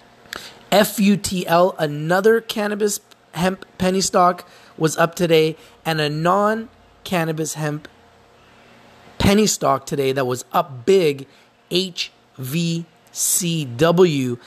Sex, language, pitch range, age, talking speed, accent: male, English, 135-180 Hz, 30-49, 85 wpm, American